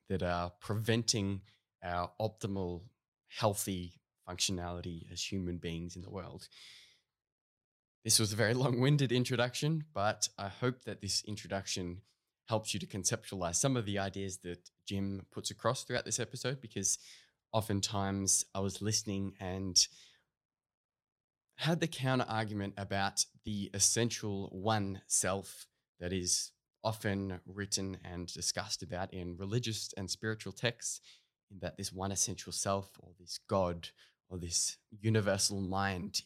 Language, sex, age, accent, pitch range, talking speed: English, male, 20-39, Australian, 95-110 Hz, 135 wpm